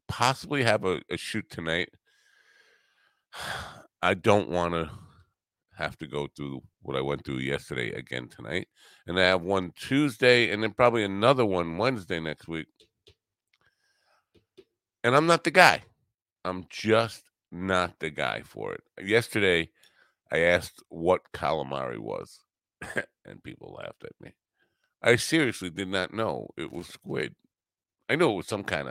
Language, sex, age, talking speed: English, male, 50-69, 145 wpm